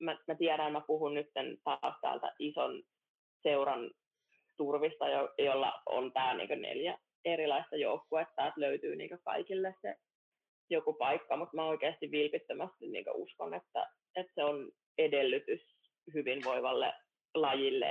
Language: Finnish